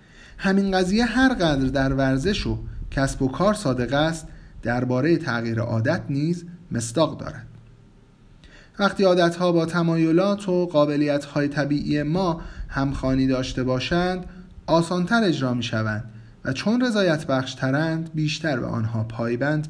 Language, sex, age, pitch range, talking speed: Persian, male, 30-49, 130-180 Hz, 130 wpm